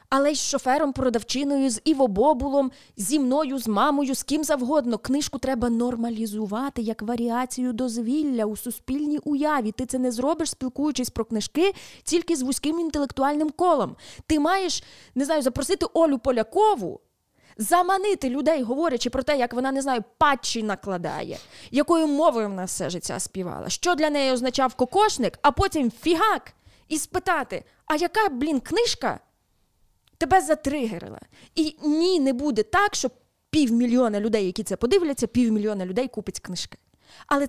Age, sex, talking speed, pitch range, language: 20-39, female, 145 wpm, 225-300 Hz, Ukrainian